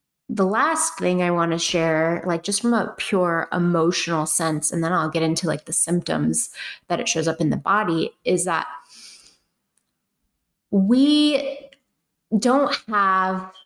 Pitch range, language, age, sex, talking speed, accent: 180-245 Hz, English, 20-39, female, 150 wpm, American